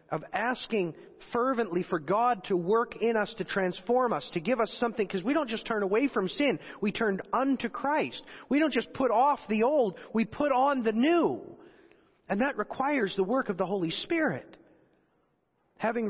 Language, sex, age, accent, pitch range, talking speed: English, male, 40-59, American, 200-265 Hz, 185 wpm